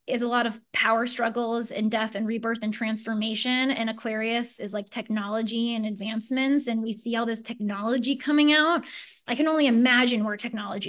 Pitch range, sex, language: 225-270 Hz, female, English